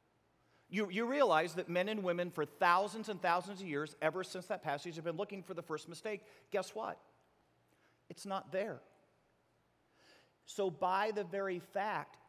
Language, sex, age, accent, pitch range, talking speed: English, male, 40-59, American, 160-205 Hz, 165 wpm